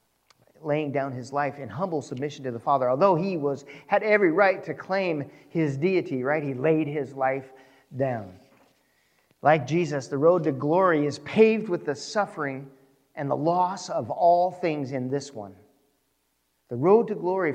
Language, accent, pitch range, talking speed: English, American, 125-155 Hz, 170 wpm